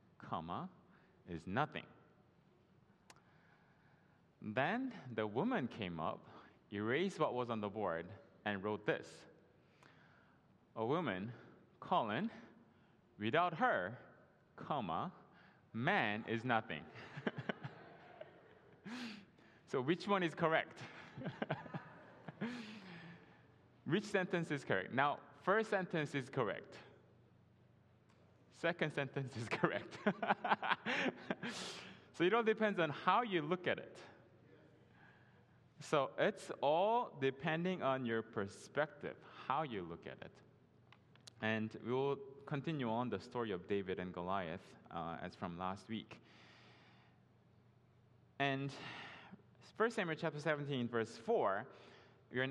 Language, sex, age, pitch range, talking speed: English, male, 20-39, 115-175 Hz, 105 wpm